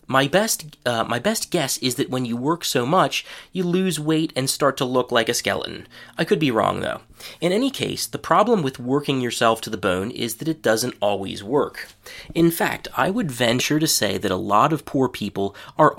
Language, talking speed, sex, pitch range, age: English, 220 wpm, male, 115-160 Hz, 30-49